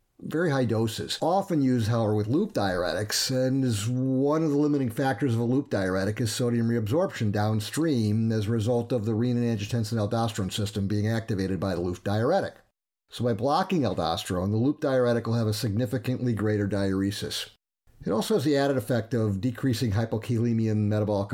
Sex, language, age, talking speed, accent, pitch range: male, English, 50-69, 175 wpm, American, 105-130 Hz